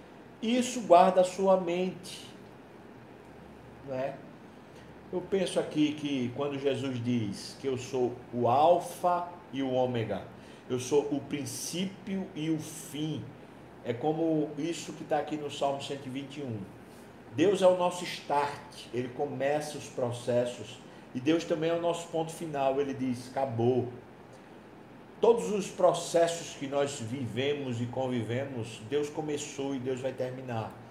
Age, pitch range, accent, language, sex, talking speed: 50-69, 130-165 Hz, Brazilian, Portuguese, male, 140 wpm